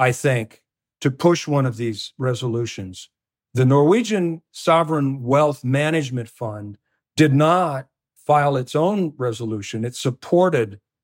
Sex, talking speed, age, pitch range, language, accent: male, 120 wpm, 50-69, 130-155 Hz, English, American